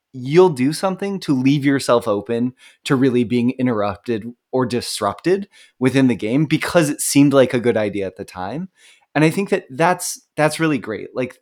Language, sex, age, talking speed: English, male, 20-39, 185 wpm